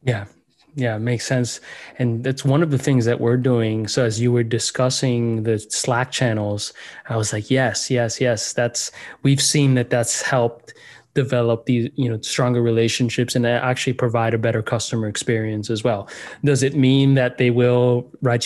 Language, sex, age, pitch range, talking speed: English, male, 20-39, 115-130 Hz, 180 wpm